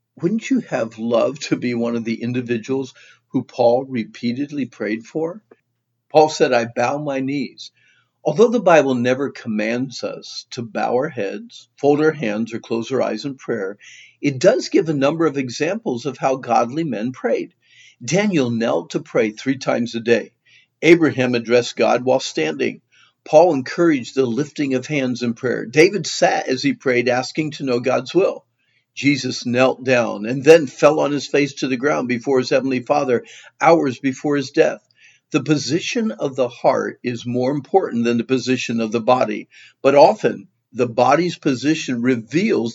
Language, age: English, 50-69